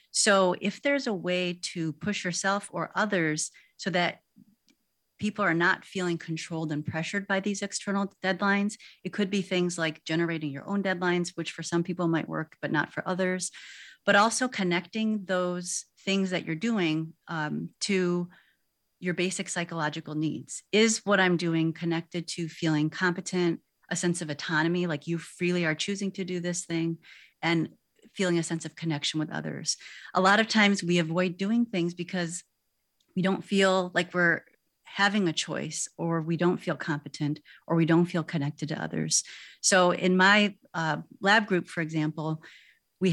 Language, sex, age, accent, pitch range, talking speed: English, female, 30-49, American, 165-190 Hz, 170 wpm